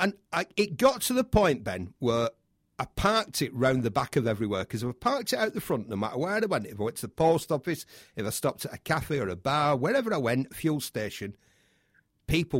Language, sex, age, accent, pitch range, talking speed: English, male, 40-59, British, 115-145 Hz, 245 wpm